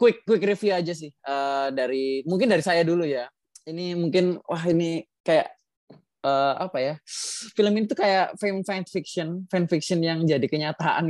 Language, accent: Indonesian, native